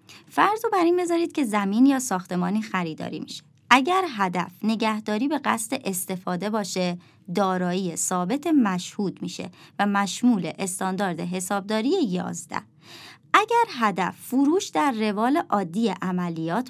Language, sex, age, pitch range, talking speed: Persian, male, 30-49, 180-230 Hz, 120 wpm